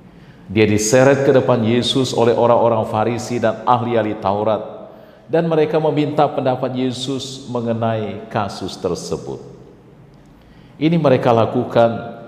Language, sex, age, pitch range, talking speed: Indonesian, male, 50-69, 105-135 Hz, 110 wpm